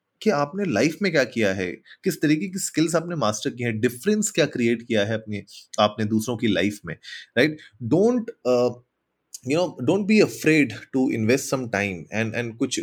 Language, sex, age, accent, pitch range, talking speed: Hindi, male, 30-49, native, 105-145 Hz, 195 wpm